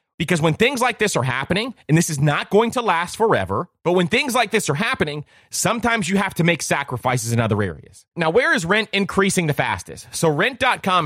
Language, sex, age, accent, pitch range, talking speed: English, male, 30-49, American, 150-210 Hz, 215 wpm